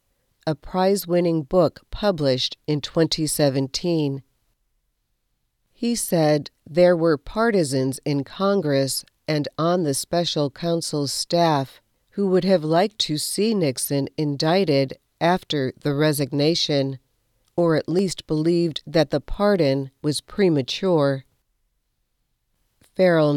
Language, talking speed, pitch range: English, 105 wpm, 140-175 Hz